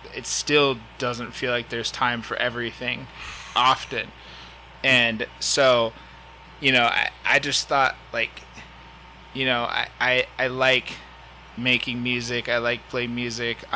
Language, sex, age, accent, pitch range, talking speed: English, male, 20-39, American, 115-130 Hz, 135 wpm